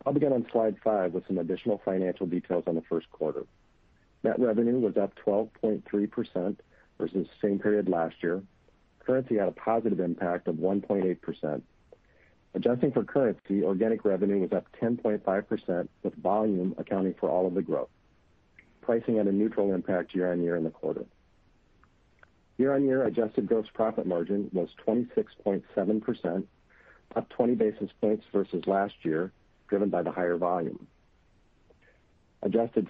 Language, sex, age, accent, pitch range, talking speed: English, male, 50-69, American, 90-110 Hz, 140 wpm